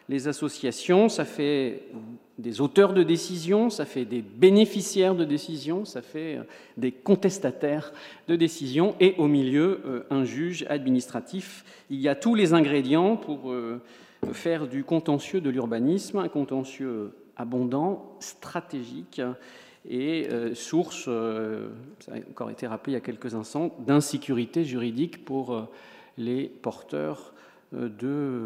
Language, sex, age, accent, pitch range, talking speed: French, male, 50-69, French, 125-170 Hz, 125 wpm